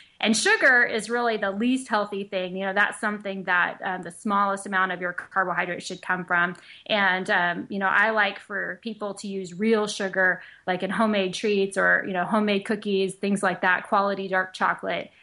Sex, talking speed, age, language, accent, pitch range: female, 195 wpm, 20-39, English, American, 185-220 Hz